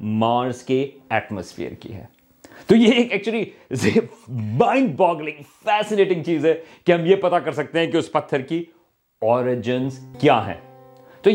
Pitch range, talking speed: 135-190 Hz, 145 wpm